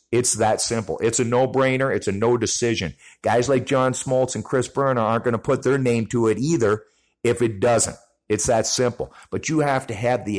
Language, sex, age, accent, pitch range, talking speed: English, male, 50-69, American, 115-145 Hz, 215 wpm